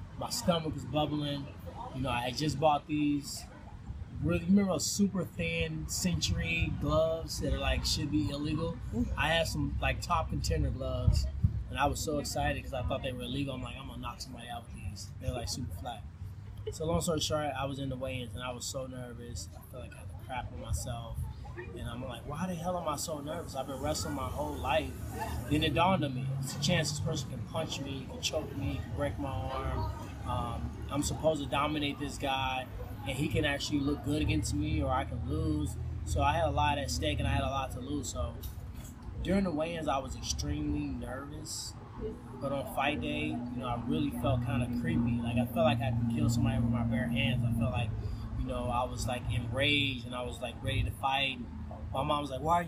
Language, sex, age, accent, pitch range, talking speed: English, male, 20-39, American, 105-145 Hz, 225 wpm